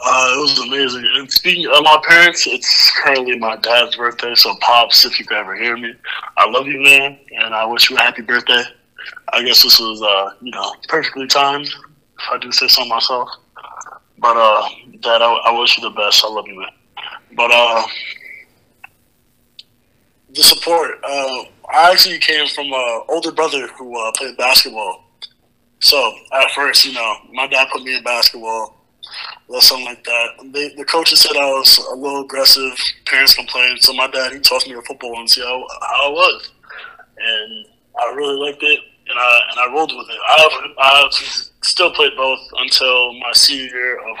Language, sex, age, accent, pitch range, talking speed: English, male, 20-39, American, 120-145 Hz, 190 wpm